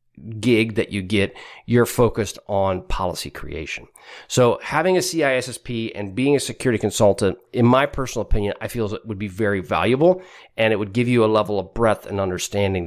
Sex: male